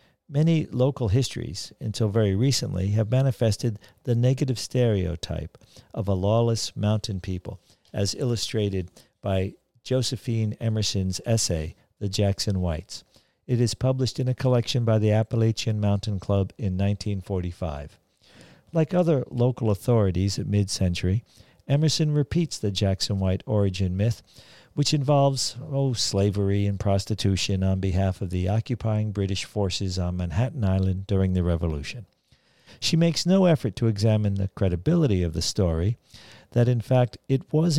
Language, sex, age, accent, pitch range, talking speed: English, male, 50-69, American, 95-125 Hz, 135 wpm